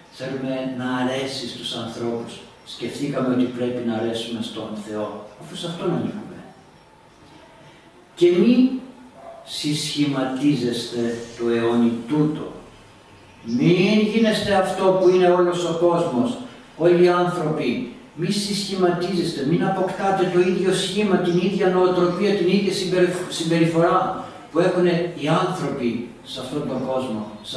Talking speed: 120 wpm